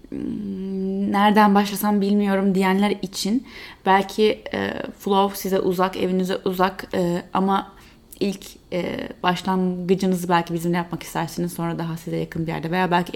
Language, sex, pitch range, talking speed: Turkish, female, 175-210 Hz, 130 wpm